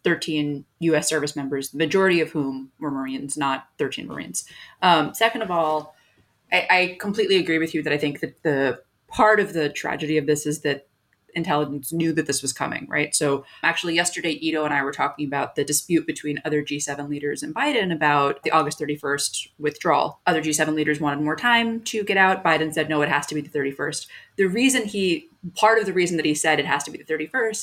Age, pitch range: 30-49, 145-175 Hz